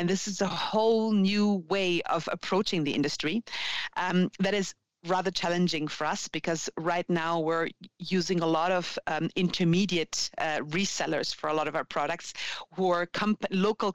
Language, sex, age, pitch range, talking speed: English, female, 40-59, 170-205 Hz, 170 wpm